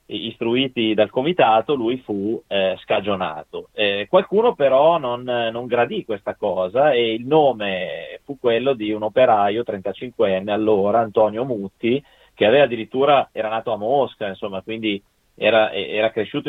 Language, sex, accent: Italian, male, native